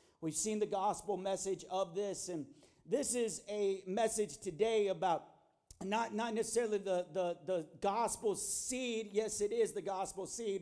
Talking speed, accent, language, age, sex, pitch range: 160 wpm, American, English, 40-59, male, 190-230 Hz